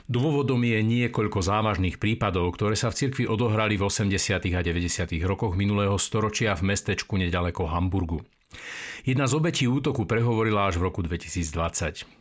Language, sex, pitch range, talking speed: Slovak, male, 95-115 Hz, 150 wpm